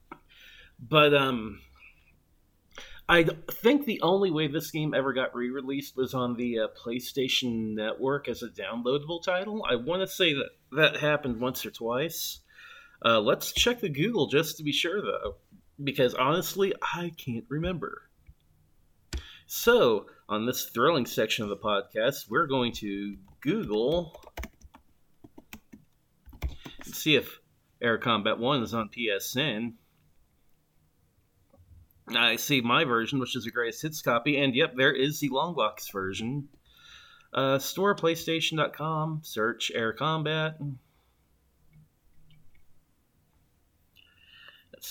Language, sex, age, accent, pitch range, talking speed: English, male, 30-49, American, 100-155 Hz, 125 wpm